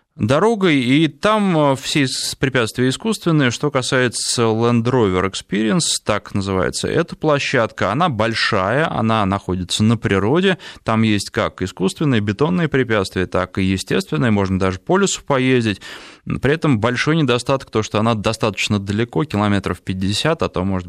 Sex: male